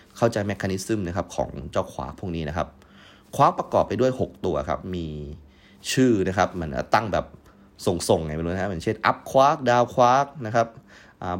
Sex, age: male, 20-39